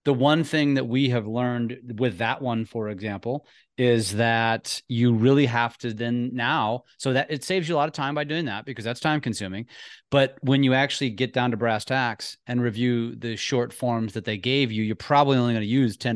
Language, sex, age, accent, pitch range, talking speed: English, male, 30-49, American, 115-145 Hz, 225 wpm